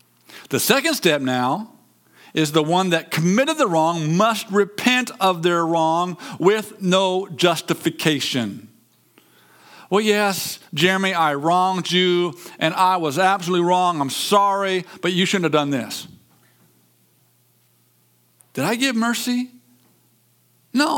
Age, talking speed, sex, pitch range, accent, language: 50-69, 125 wpm, male, 130-205 Hz, American, English